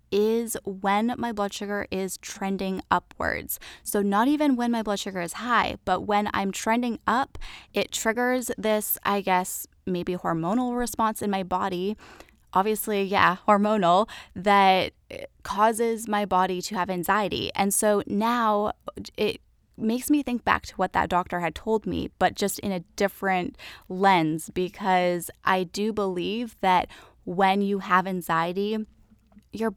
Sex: female